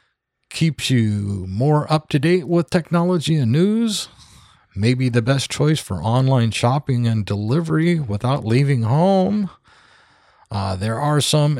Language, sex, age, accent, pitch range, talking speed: English, male, 40-59, American, 110-155 Hz, 125 wpm